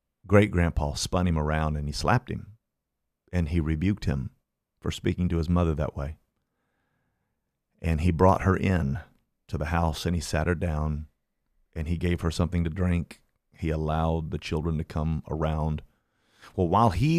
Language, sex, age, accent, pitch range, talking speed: English, male, 40-59, American, 80-90 Hz, 170 wpm